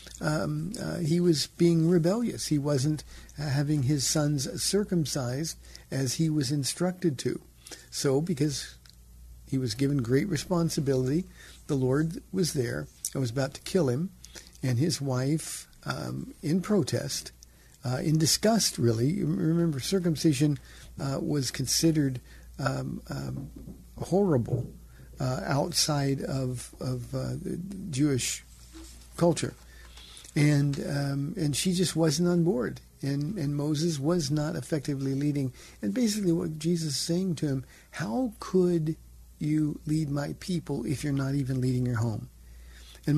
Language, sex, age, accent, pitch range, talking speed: English, male, 60-79, American, 135-170 Hz, 135 wpm